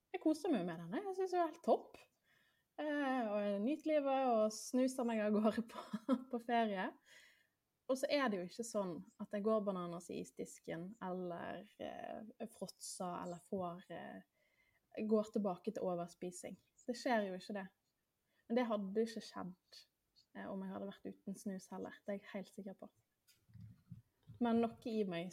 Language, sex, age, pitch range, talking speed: English, female, 20-39, 190-235 Hz, 180 wpm